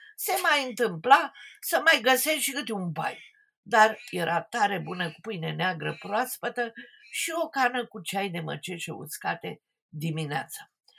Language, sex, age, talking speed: Romanian, female, 50-69, 145 wpm